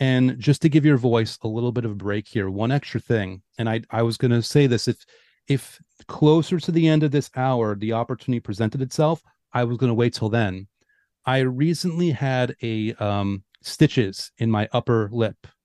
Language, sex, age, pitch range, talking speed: English, male, 30-49, 115-150 Hz, 205 wpm